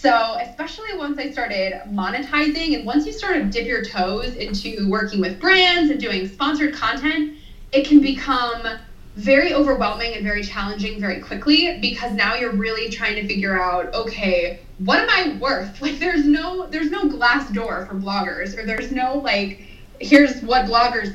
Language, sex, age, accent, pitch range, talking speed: English, female, 20-39, American, 200-280 Hz, 175 wpm